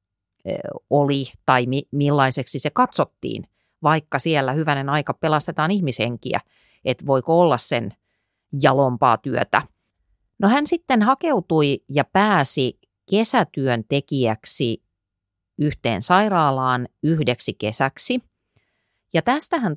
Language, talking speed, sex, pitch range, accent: Finnish, 95 wpm, female, 120-175 Hz, native